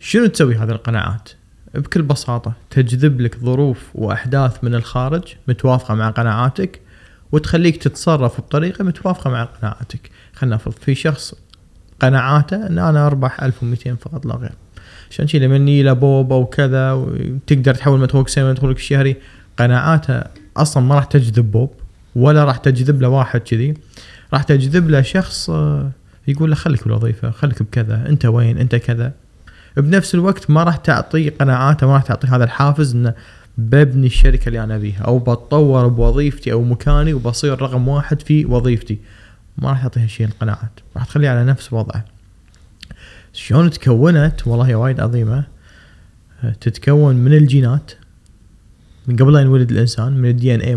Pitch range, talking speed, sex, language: 115-140 Hz, 150 wpm, male, Arabic